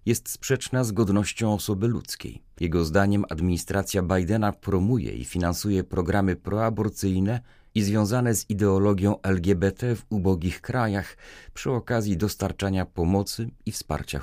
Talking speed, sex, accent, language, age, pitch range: 120 wpm, male, native, Polish, 40-59, 90-115 Hz